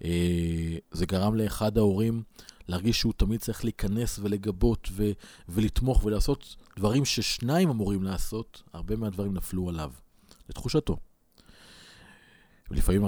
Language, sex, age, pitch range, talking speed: Hebrew, male, 40-59, 90-115 Hz, 105 wpm